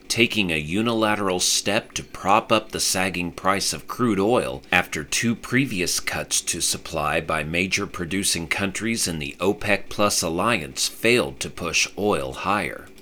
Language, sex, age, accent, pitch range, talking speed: English, male, 40-59, American, 80-105 Hz, 150 wpm